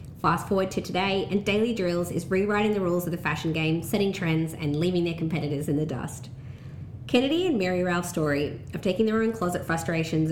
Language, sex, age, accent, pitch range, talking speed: English, female, 20-39, Australian, 155-195 Hz, 205 wpm